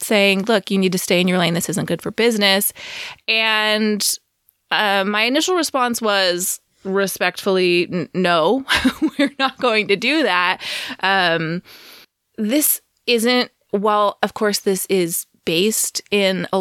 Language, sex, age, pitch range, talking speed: English, female, 20-39, 180-225 Hz, 140 wpm